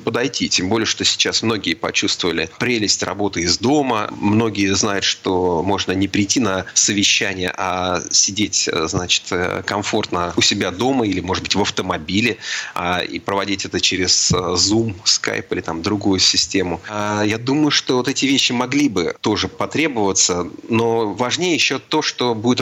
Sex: male